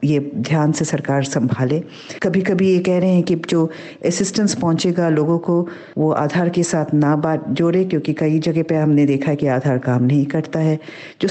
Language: Hindi